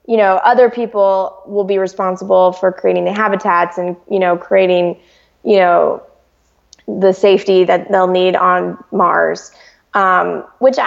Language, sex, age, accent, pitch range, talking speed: English, female, 20-39, American, 190-240 Hz, 145 wpm